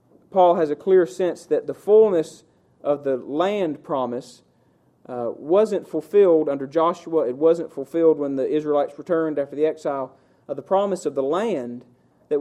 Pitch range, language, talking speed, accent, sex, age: 135-185 Hz, English, 165 wpm, American, male, 40-59